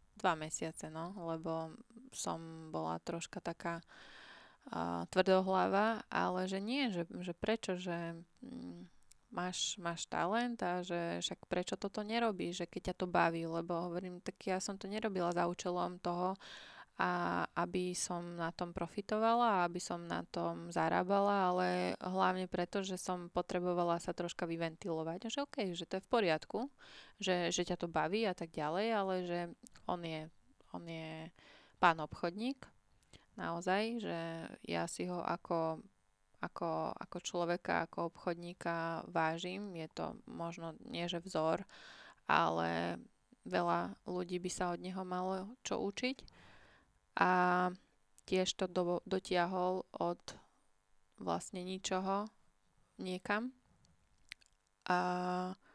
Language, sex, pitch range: Slovak, female, 165-190 Hz